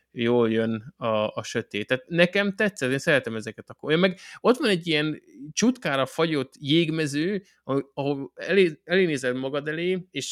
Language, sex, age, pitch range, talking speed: Hungarian, male, 20-39, 115-150 Hz, 145 wpm